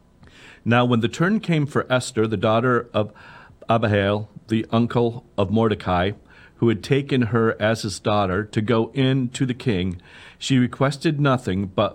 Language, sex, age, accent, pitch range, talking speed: English, male, 40-59, American, 100-130 Hz, 160 wpm